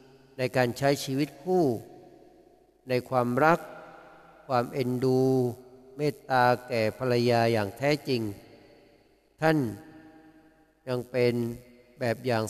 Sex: male